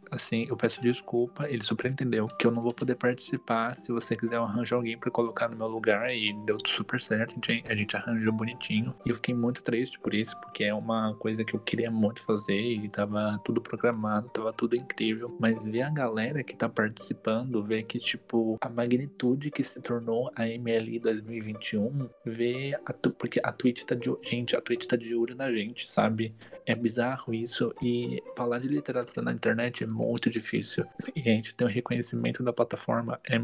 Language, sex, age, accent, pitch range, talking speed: Portuguese, male, 20-39, Brazilian, 110-120 Hz, 195 wpm